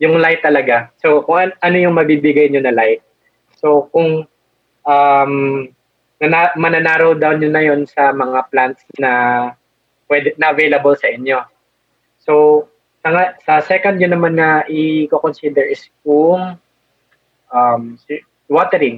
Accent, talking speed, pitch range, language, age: native, 120 wpm, 130-155 Hz, Filipino, 20-39